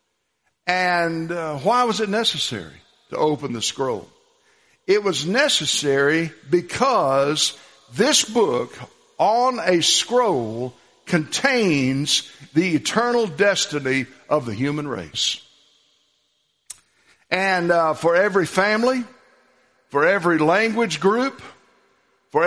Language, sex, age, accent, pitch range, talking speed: English, male, 60-79, American, 140-225 Hz, 100 wpm